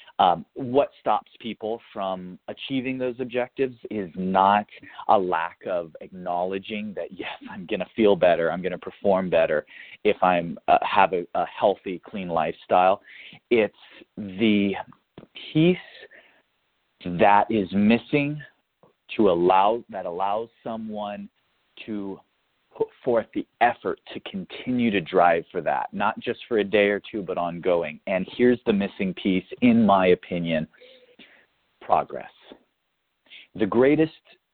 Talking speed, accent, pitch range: 135 wpm, American, 100-145 Hz